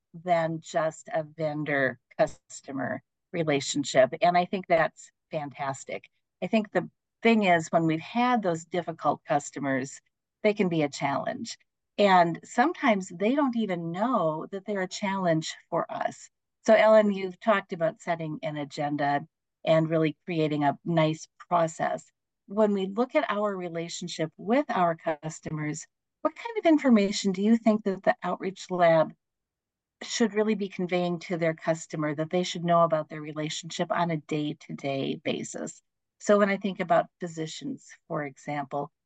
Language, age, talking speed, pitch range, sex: English, 50-69, 150 wpm, 160-205 Hz, female